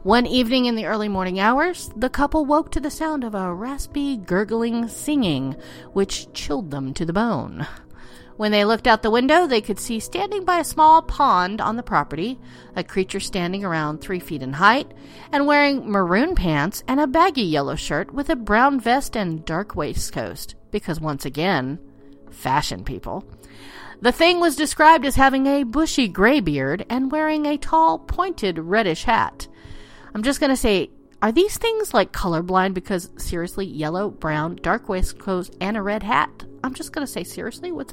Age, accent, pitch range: 40-59, American, 185-285 Hz